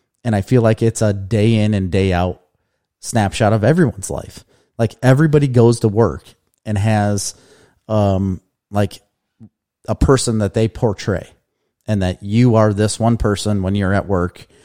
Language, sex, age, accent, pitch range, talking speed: English, male, 30-49, American, 95-115 Hz, 165 wpm